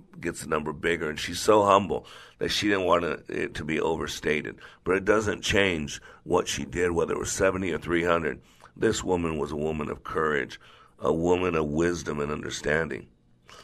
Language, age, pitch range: English, 50-69, 85-105 Hz